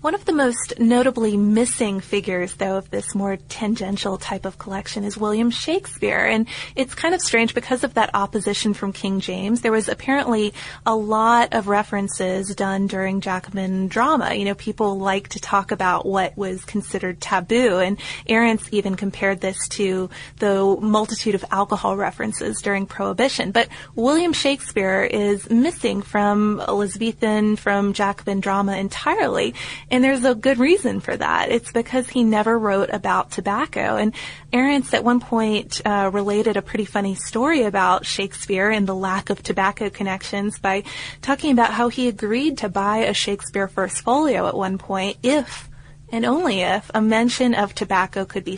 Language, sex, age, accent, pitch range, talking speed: English, female, 20-39, American, 195-230 Hz, 165 wpm